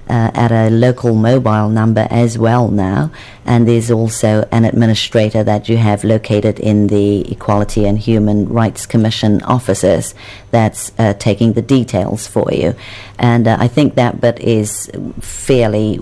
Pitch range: 110-125 Hz